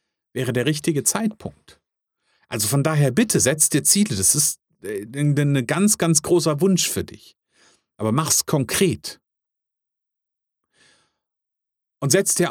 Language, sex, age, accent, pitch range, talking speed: German, male, 40-59, German, 125-190 Hz, 125 wpm